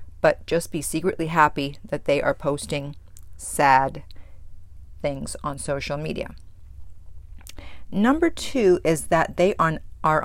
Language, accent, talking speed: English, American, 115 wpm